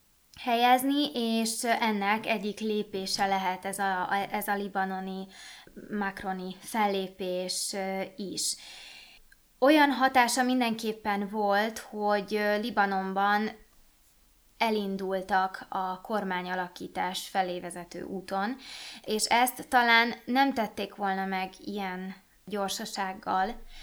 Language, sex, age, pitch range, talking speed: Hungarian, female, 20-39, 190-220 Hz, 85 wpm